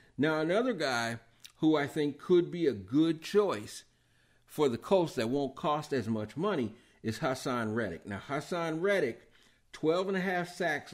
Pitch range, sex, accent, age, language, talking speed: 125-175 Hz, male, American, 50-69, English, 155 wpm